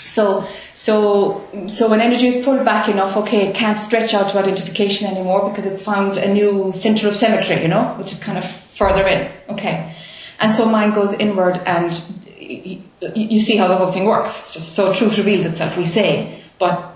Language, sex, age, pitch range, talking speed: English, female, 30-49, 185-220 Hz, 210 wpm